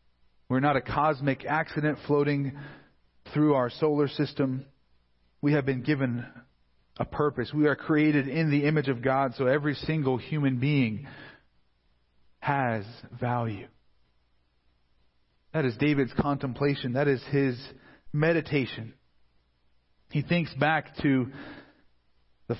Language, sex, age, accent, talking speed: English, male, 40-59, American, 115 wpm